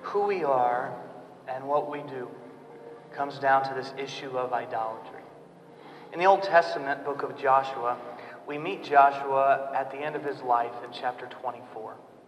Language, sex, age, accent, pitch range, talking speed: English, male, 40-59, American, 125-145 Hz, 160 wpm